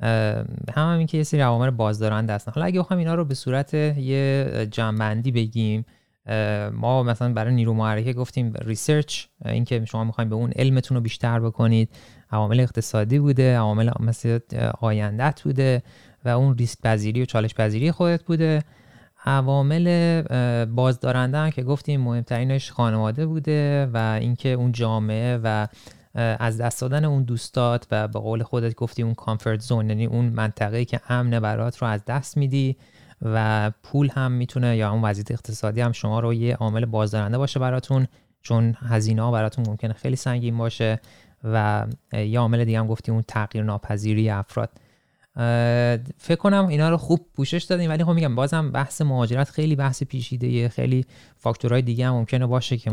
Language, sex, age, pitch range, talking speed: Persian, male, 30-49, 110-130 Hz, 165 wpm